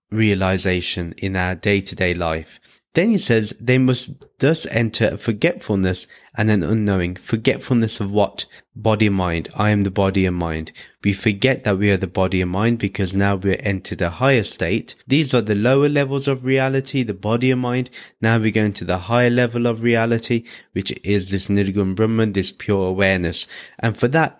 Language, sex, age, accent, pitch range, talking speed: English, male, 20-39, British, 95-120 Hz, 185 wpm